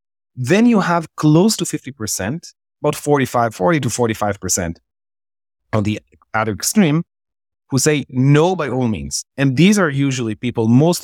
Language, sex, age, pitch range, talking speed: English, male, 30-49, 105-135 Hz, 145 wpm